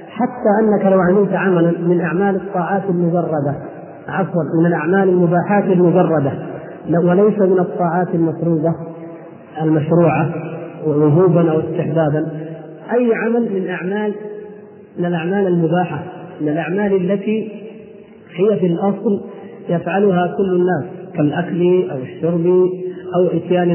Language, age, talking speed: Arabic, 40-59, 105 wpm